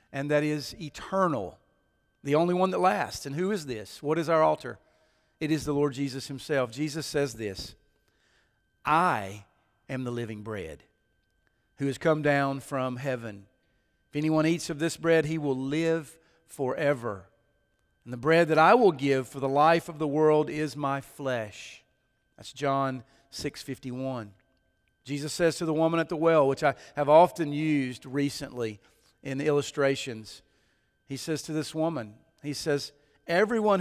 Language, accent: English, American